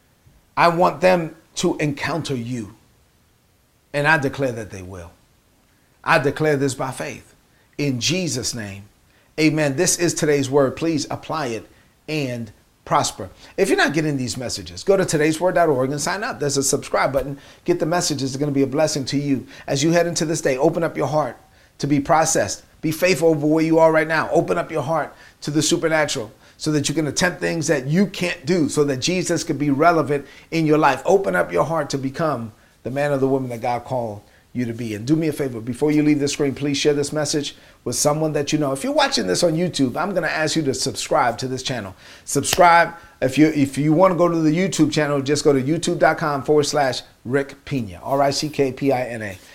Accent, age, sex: American, 40-59, male